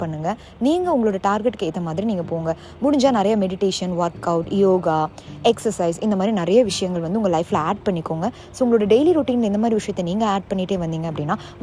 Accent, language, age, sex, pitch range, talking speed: native, Tamil, 20-39, female, 180-255 Hz, 175 wpm